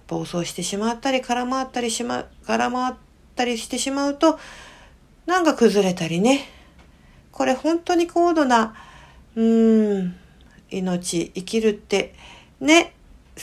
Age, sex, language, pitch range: 50-69, female, Japanese, 175-250 Hz